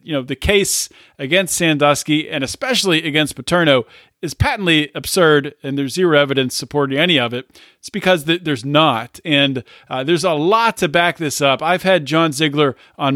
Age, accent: 40-59, American